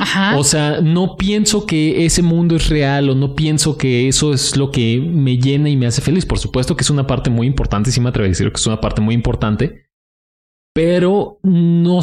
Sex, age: male, 30-49